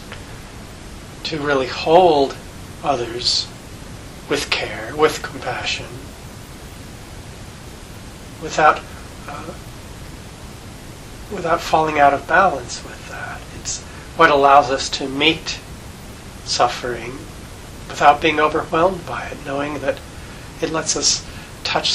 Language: English